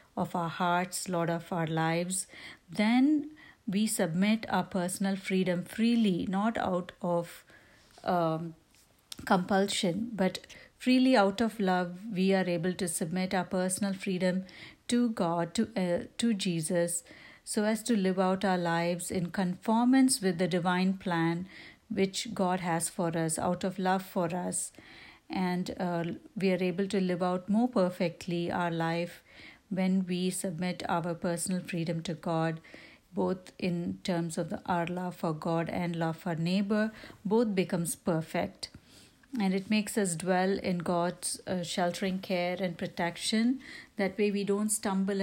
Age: 60-79